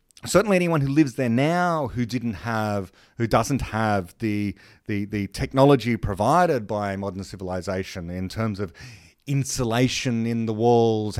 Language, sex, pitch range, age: English, male, 100-135 Hz, 30-49